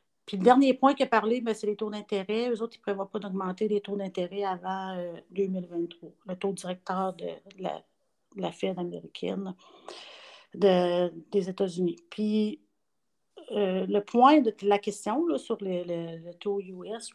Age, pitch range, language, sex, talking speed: 50-69, 180-210 Hz, French, female, 165 wpm